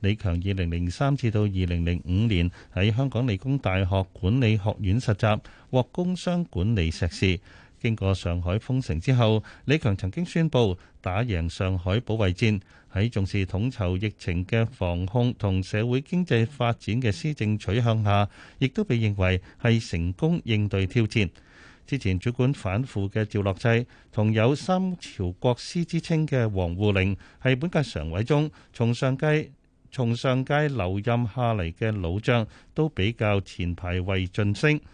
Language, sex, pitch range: Chinese, male, 95-130 Hz